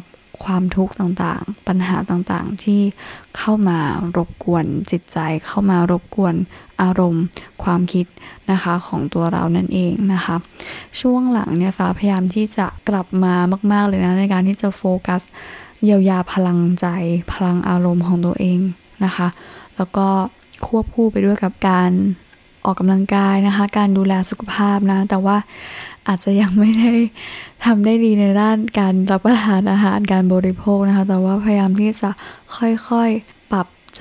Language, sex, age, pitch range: Thai, female, 20-39, 180-205 Hz